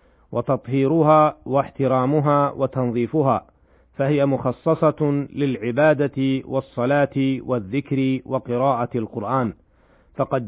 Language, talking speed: Arabic, 65 wpm